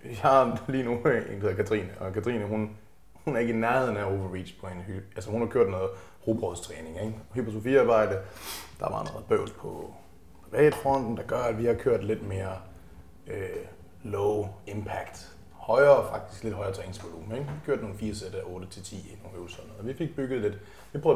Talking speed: 195 wpm